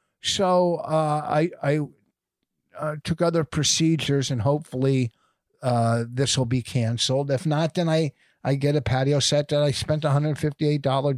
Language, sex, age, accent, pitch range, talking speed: English, male, 50-69, American, 125-150 Hz, 150 wpm